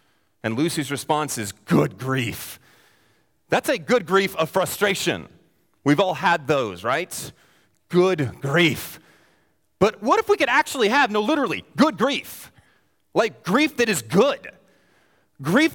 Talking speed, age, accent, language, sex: 135 wpm, 40-59, American, English, male